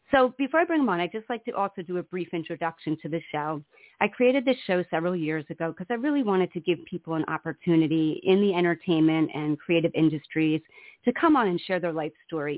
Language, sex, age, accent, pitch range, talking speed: English, female, 30-49, American, 160-190 Hz, 230 wpm